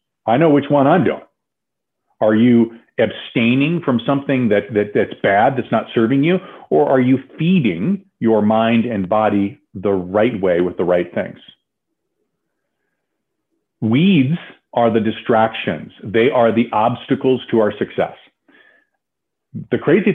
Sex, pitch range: male, 105-140 Hz